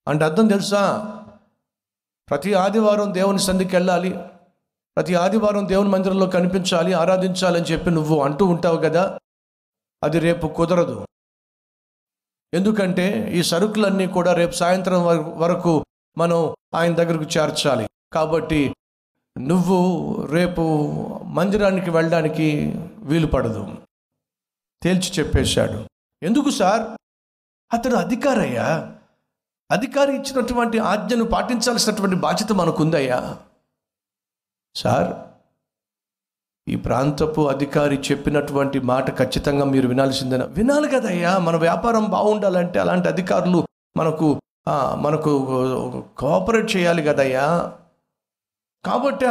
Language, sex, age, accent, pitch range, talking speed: Telugu, male, 50-69, native, 140-195 Hz, 90 wpm